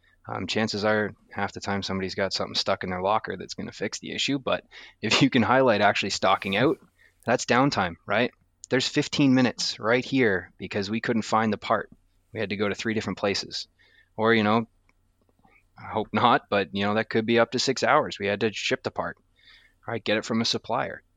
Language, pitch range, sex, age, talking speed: English, 95-115 Hz, male, 20-39, 220 wpm